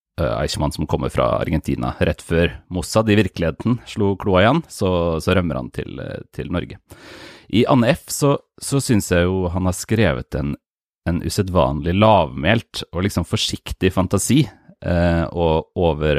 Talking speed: 150 wpm